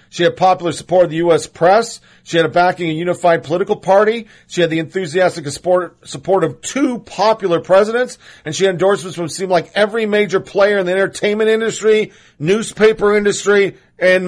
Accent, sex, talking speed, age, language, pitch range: American, male, 185 wpm, 40-59, English, 145-180 Hz